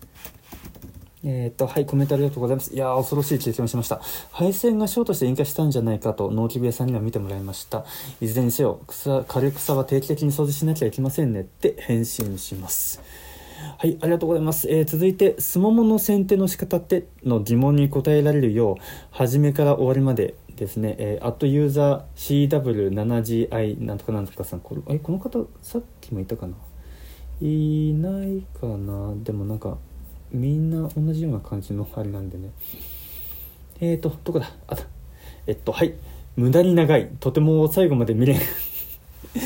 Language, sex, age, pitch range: Japanese, male, 20-39, 95-145 Hz